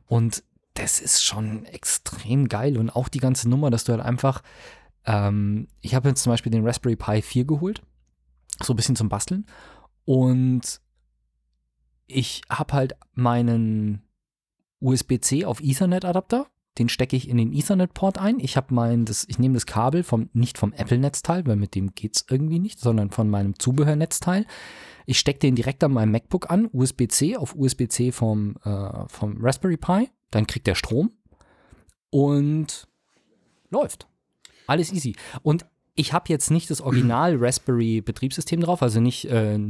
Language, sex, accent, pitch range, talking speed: German, male, German, 115-145 Hz, 155 wpm